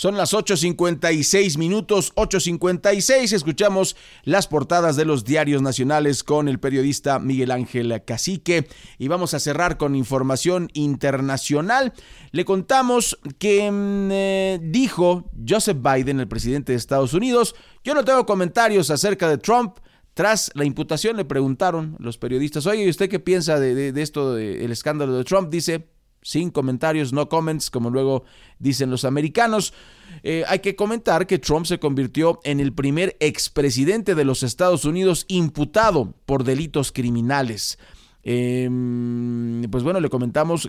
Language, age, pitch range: Spanish, 40-59, 135-180 Hz